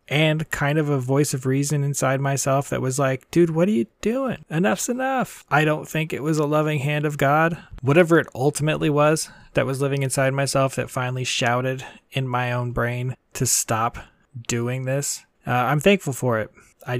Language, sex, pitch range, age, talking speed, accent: English, male, 130-150 Hz, 20-39, 195 wpm, American